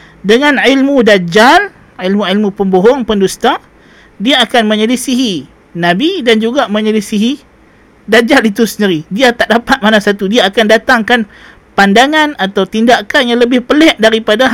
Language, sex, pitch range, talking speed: Malay, male, 180-235 Hz, 130 wpm